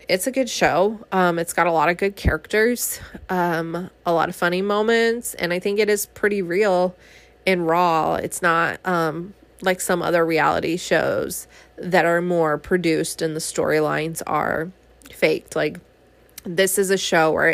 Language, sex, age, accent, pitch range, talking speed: English, female, 20-39, American, 165-195 Hz, 170 wpm